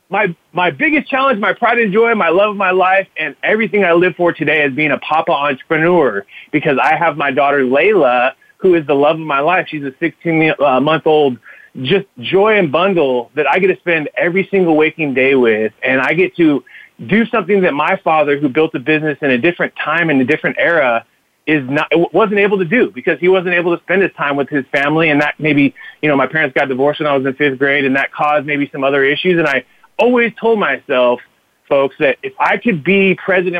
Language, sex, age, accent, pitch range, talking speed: English, male, 30-49, American, 145-195 Hz, 230 wpm